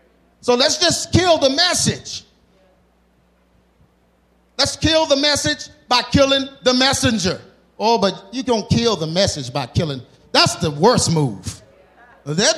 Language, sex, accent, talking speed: English, male, American, 135 wpm